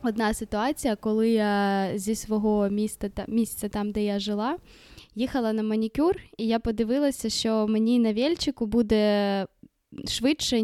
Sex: female